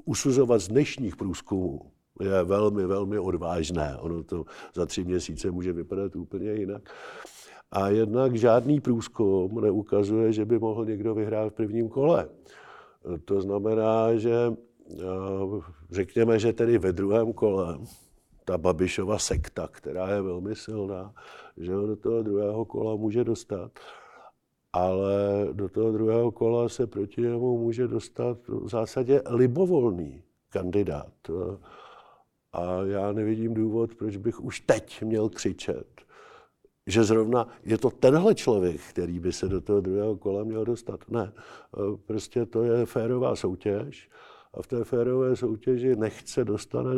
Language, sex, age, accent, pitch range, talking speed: Czech, male, 50-69, native, 100-120 Hz, 135 wpm